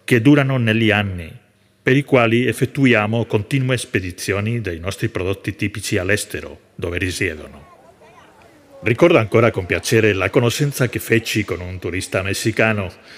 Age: 40-59